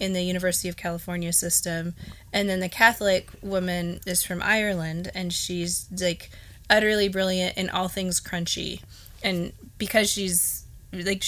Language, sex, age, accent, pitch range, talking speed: English, female, 20-39, American, 170-200 Hz, 145 wpm